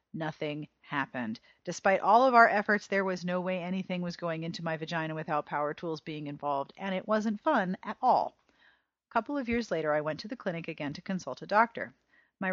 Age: 40-59